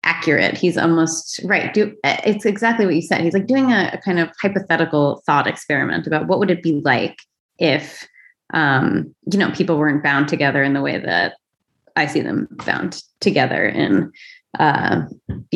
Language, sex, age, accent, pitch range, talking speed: English, female, 20-39, American, 145-190 Hz, 170 wpm